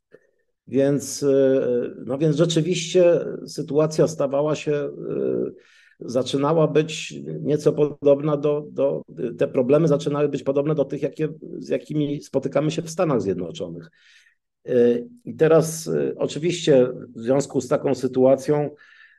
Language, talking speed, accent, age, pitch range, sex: Polish, 115 wpm, native, 50-69, 115-150 Hz, male